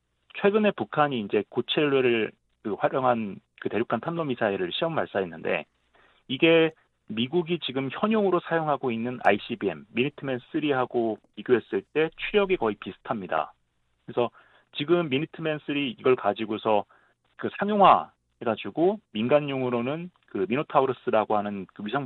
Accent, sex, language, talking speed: Korean, male, English, 100 wpm